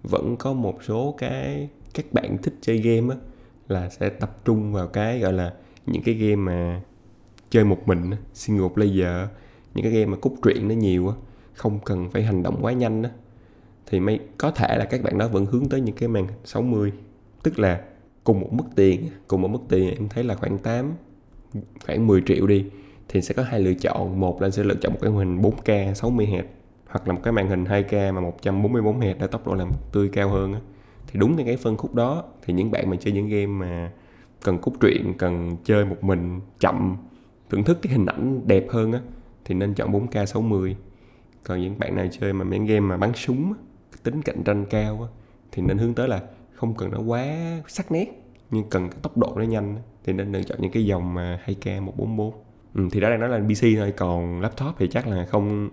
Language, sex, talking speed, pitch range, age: Vietnamese, male, 220 wpm, 95-120 Hz, 20-39